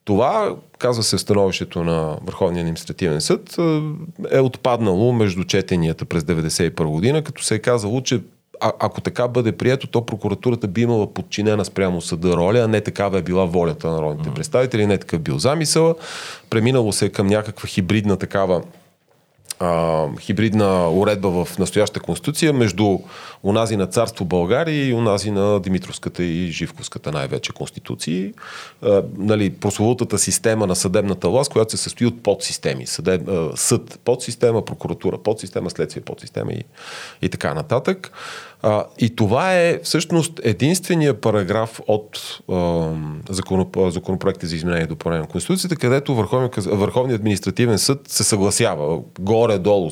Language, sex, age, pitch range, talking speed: Bulgarian, male, 30-49, 95-120 Hz, 135 wpm